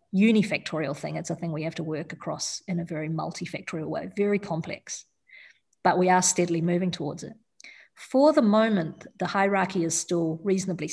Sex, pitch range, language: female, 165-195 Hz, English